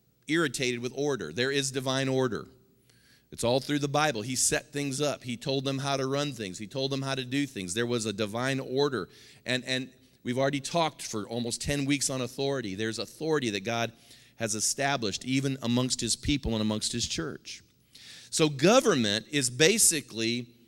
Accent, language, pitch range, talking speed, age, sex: American, English, 125-165 Hz, 185 wpm, 40-59, male